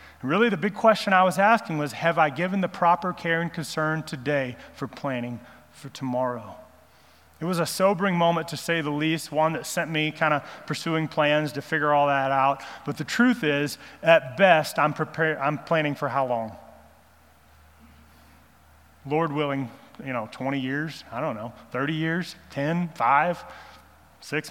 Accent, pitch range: American, 140-180 Hz